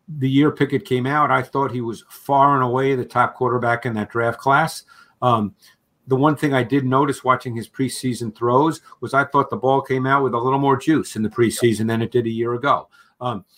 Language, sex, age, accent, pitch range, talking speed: English, male, 50-69, American, 125-150 Hz, 230 wpm